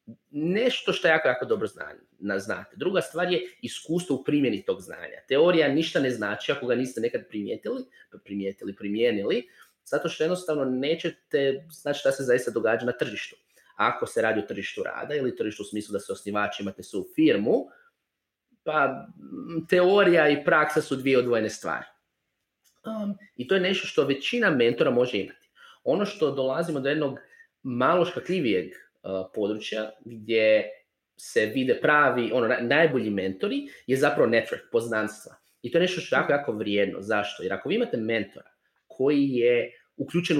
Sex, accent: male, native